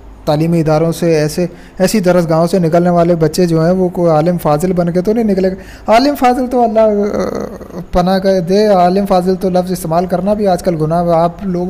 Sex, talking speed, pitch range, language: male, 210 wpm, 155-190 Hz, Urdu